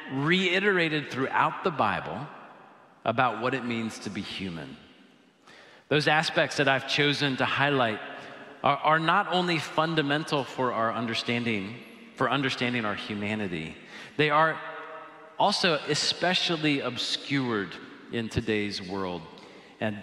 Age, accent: 40-59, American